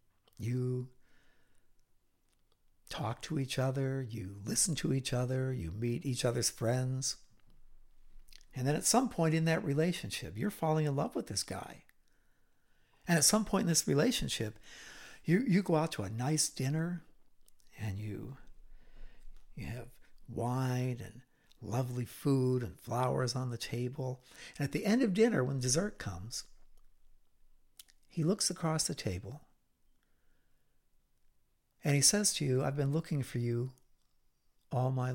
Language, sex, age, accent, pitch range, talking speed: English, male, 60-79, American, 115-155 Hz, 145 wpm